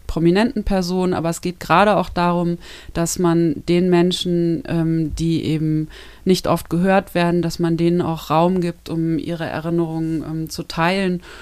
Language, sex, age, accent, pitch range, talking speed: German, female, 30-49, German, 160-175 Hz, 165 wpm